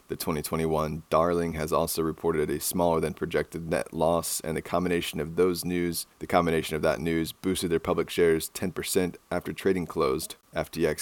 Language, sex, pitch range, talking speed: English, male, 80-90 Hz, 175 wpm